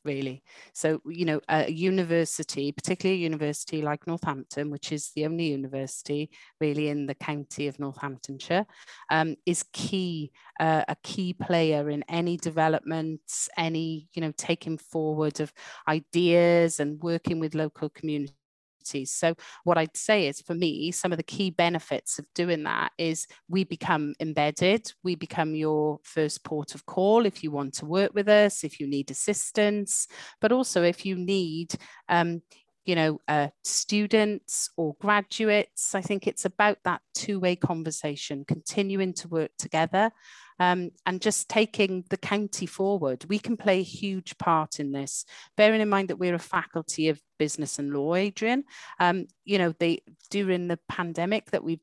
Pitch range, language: 155-190 Hz, English